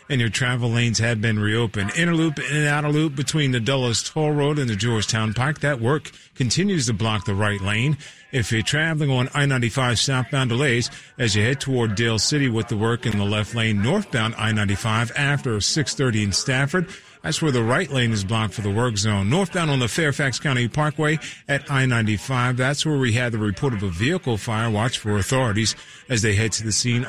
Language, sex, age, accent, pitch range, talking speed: English, male, 40-59, American, 115-145 Hz, 215 wpm